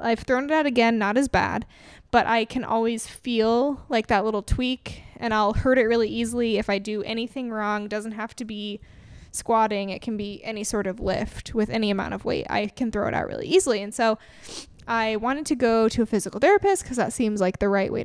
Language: English